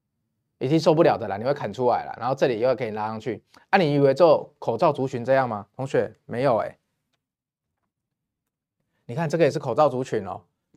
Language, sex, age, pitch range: Chinese, male, 20-39, 120-155 Hz